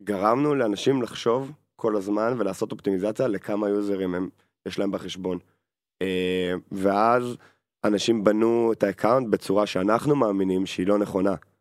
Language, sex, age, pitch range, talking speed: Hebrew, male, 20-39, 95-115 Hz, 125 wpm